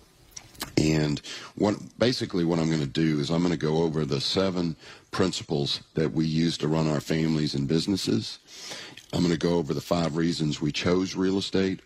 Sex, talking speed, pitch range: male, 190 wpm, 75-90 Hz